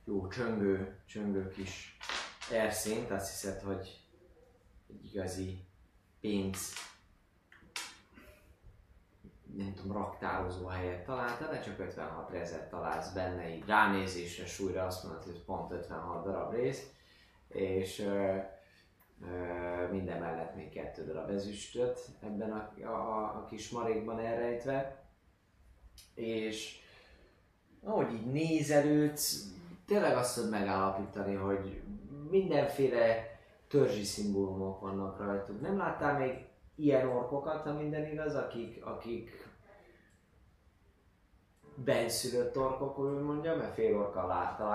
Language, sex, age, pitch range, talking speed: Hungarian, male, 20-39, 95-115 Hz, 105 wpm